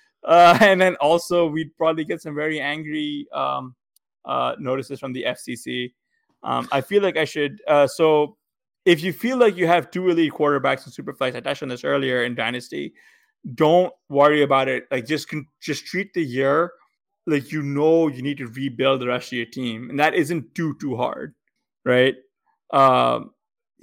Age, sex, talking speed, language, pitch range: 20-39, male, 180 wpm, English, 125-160 Hz